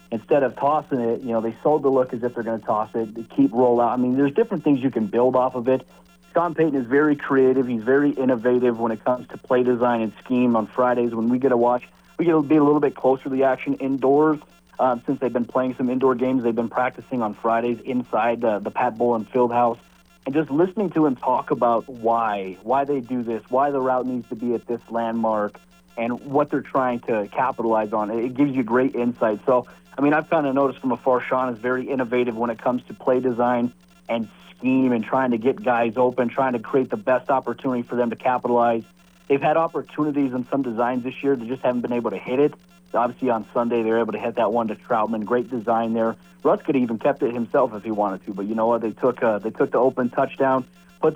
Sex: male